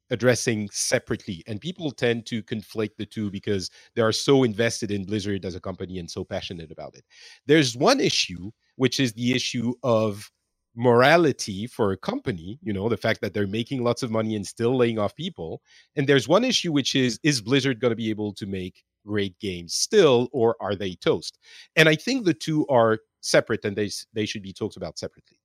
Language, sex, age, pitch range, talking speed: English, male, 40-59, 105-150 Hz, 205 wpm